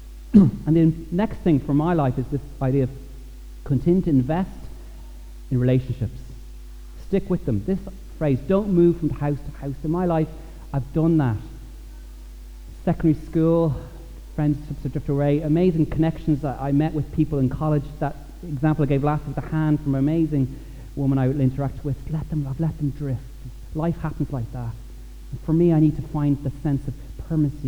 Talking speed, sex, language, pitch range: 180 wpm, male, English, 120-150 Hz